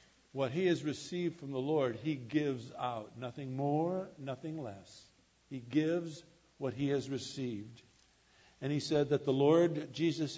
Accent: American